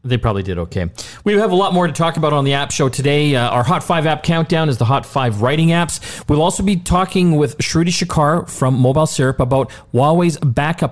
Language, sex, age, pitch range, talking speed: English, male, 40-59, 105-155 Hz, 230 wpm